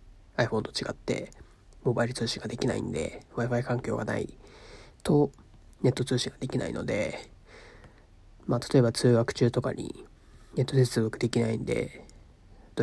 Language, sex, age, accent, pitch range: Japanese, male, 40-59, native, 105-125 Hz